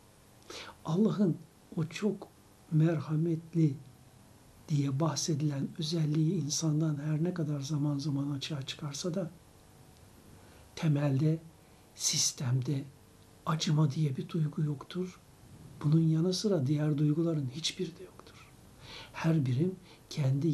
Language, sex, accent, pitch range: Turkish, male, native, 140-180 Hz